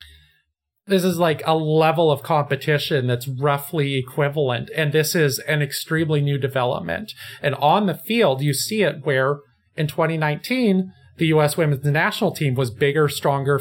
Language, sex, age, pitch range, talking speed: English, male, 30-49, 125-155 Hz, 155 wpm